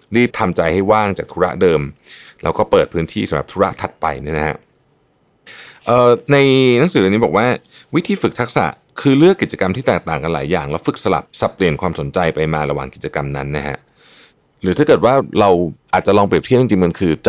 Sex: male